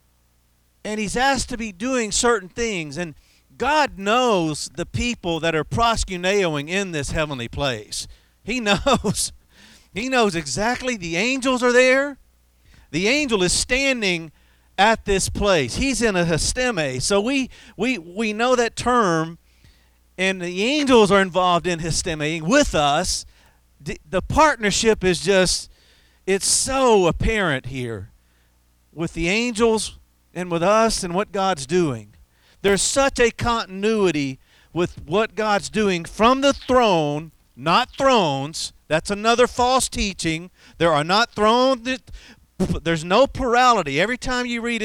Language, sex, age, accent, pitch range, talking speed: English, male, 50-69, American, 155-230 Hz, 140 wpm